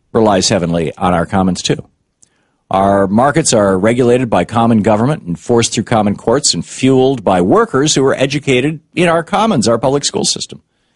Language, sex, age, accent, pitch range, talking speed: English, male, 50-69, American, 95-130 Hz, 175 wpm